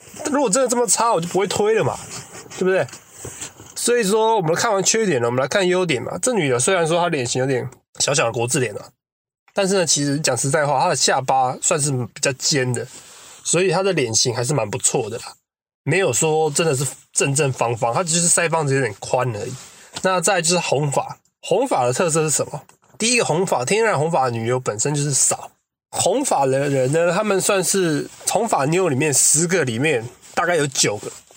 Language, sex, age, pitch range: English, male, 20-39, 130-180 Hz